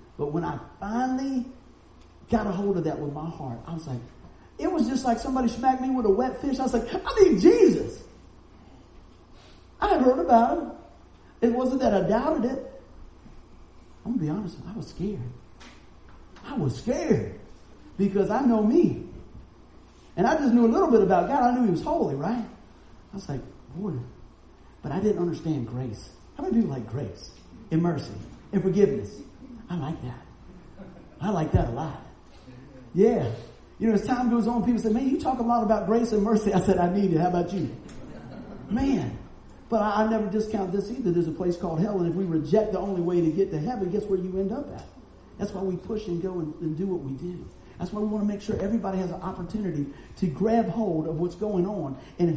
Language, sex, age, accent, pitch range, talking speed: English, male, 40-59, American, 170-230 Hz, 215 wpm